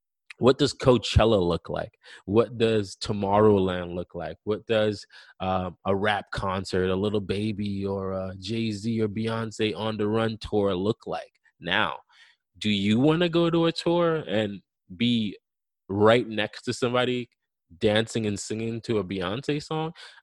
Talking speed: 155 wpm